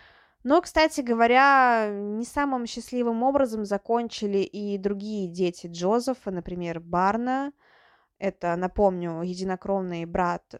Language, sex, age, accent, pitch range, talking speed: Russian, female, 20-39, native, 185-230 Hz, 100 wpm